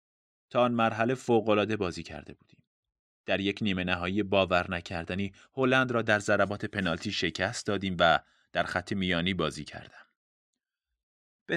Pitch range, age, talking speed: 85-120 Hz, 30-49, 135 wpm